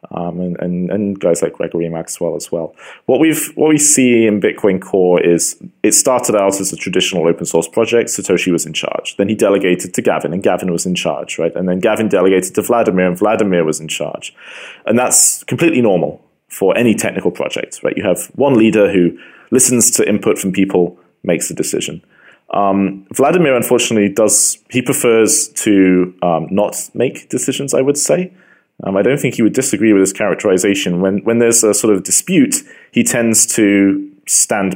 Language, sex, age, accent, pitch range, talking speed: English, male, 30-49, British, 90-115 Hz, 190 wpm